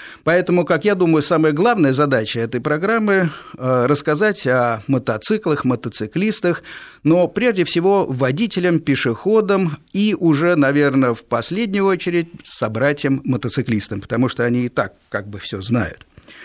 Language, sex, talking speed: Russian, male, 130 wpm